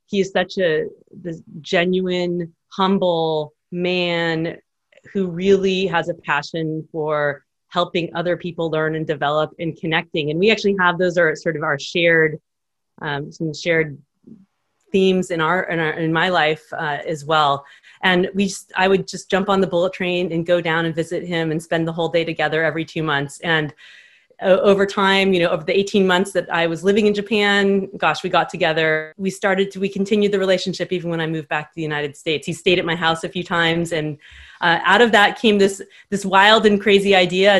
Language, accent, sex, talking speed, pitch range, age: English, American, female, 200 wpm, 160-195 Hz, 30-49